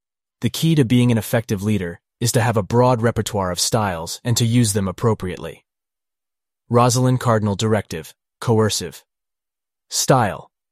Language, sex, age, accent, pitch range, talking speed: English, male, 30-49, American, 100-120 Hz, 140 wpm